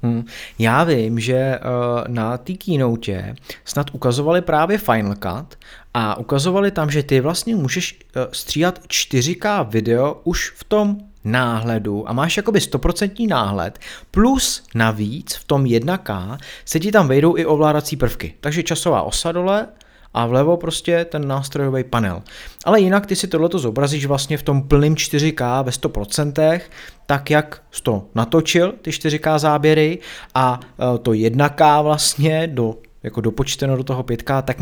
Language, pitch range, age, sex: Czech, 115-155 Hz, 30-49, male